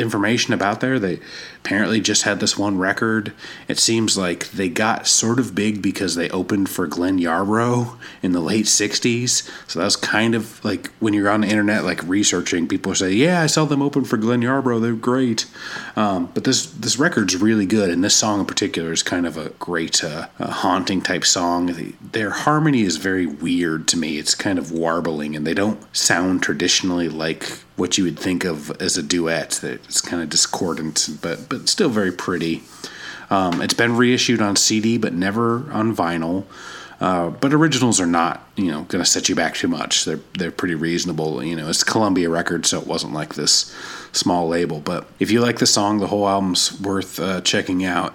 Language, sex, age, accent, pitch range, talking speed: English, male, 30-49, American, 90-115 Hz, 200 wpm